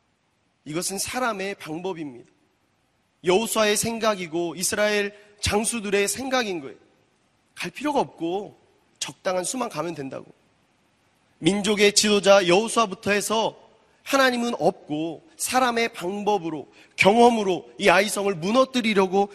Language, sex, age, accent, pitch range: Korean, male, 30-49, native, 180-235 Hz